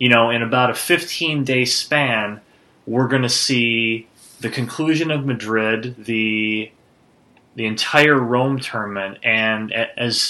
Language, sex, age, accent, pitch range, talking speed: English, male, 20-39, American, 100-120 Hz, 130 wpm